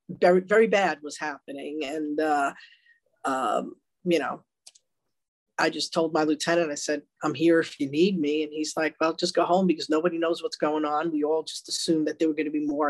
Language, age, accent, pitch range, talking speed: English, 40-59, American, 155-190 Hz, 220 wpm